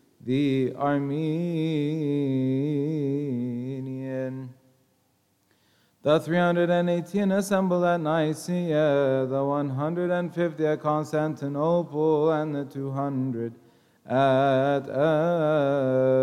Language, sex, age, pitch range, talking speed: English, male, 30-49, 130-165 Hz, 55 wpm